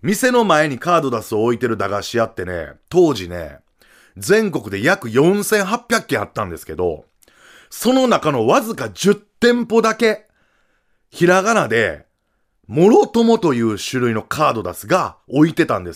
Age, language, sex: 30-49, Japanese, male